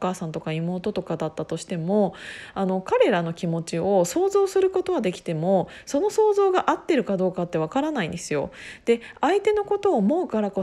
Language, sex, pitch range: Japanese, female, 185-265 Hz